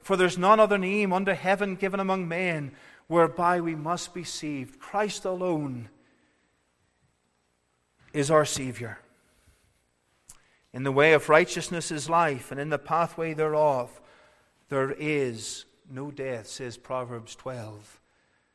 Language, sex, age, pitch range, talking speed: English, male, 40-59, 130-160 Hz, 125 wpm